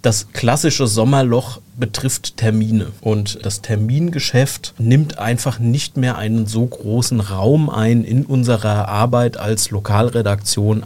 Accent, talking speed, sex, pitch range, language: German, 120 wpm, male, 110-130 Hz, German